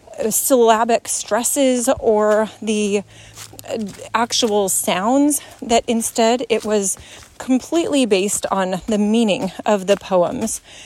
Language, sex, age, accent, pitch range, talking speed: English, female, 30-49, American, 200-255 Hz, 100 wpm